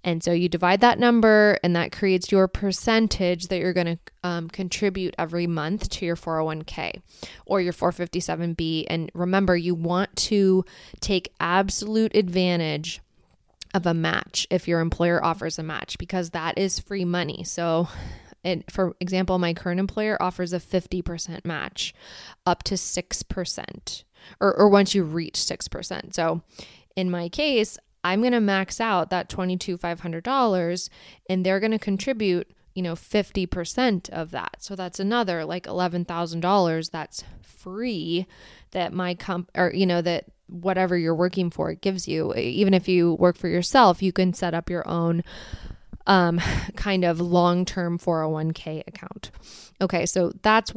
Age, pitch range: 20-39, 170-195 Hz